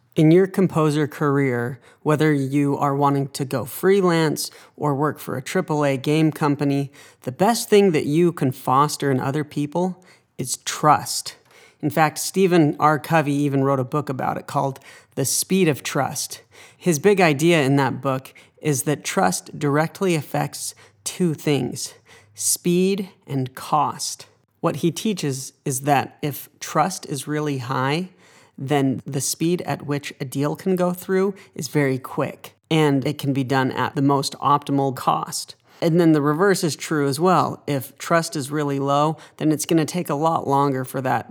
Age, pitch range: 40-59, 135-165 Hz